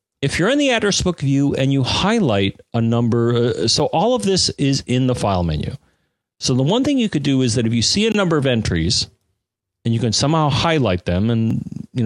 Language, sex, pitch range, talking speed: English, male, 110-140 Hz, 230 wpm